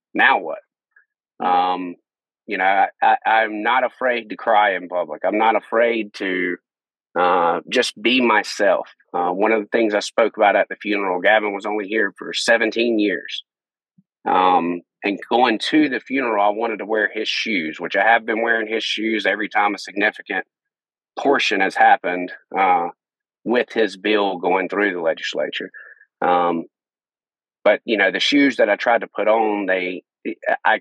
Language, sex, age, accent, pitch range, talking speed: English, male, 30-49, American, 105-130 Hz, 170 wpm